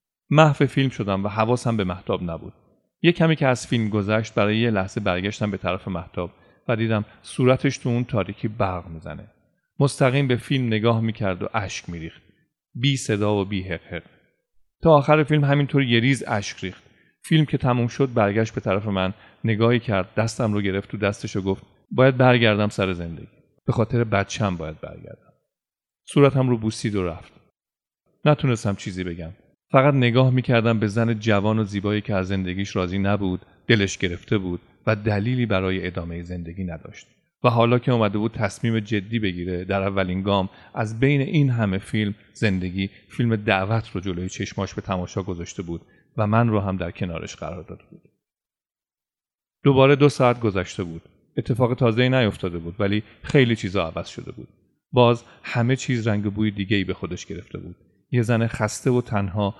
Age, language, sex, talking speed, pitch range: 40-59, Persian, male, 170 wpm, 95-120 Hz